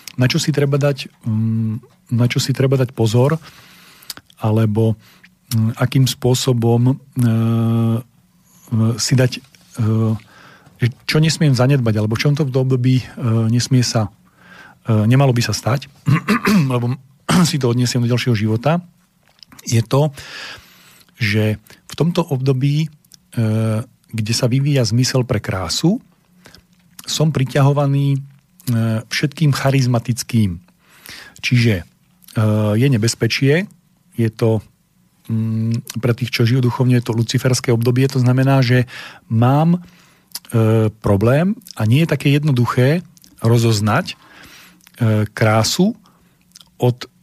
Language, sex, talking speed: Slovak, male, 100 wpm